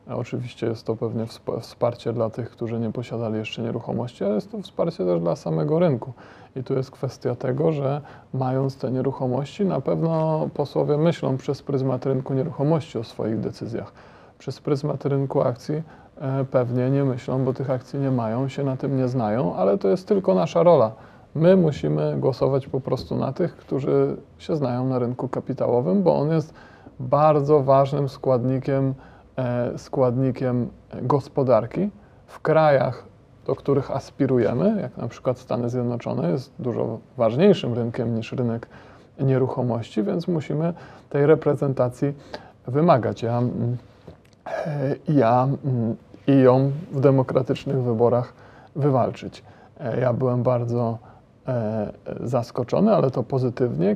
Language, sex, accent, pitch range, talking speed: Polish, male, native, 120-140 Hz, 135 wpm